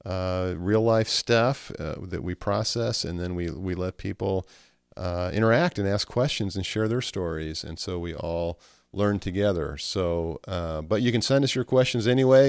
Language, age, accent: English, 40-59, American